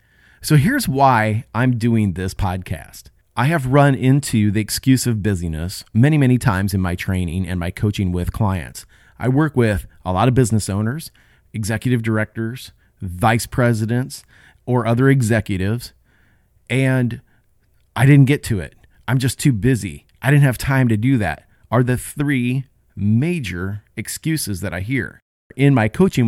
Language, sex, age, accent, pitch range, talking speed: English, male, 30-49, American, 100-135 Hz, 160 wpm